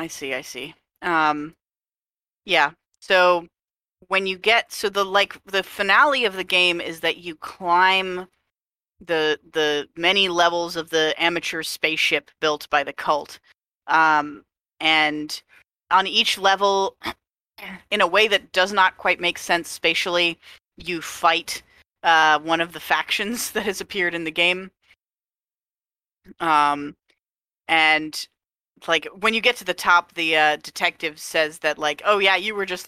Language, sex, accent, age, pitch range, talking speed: English, female, American, 30-49, 160-190 Hz, 150 wpm